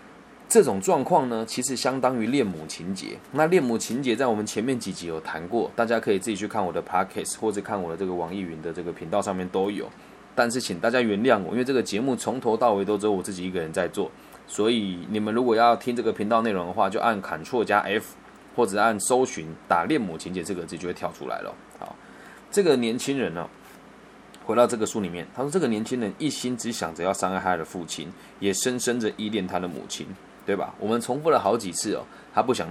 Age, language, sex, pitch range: 20-39, Chinese, male, 95-120 Hz